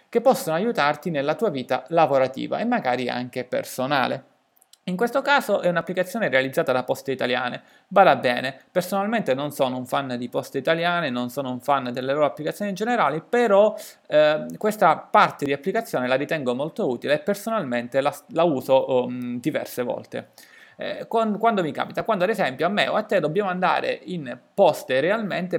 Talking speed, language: 175 wpm, Italian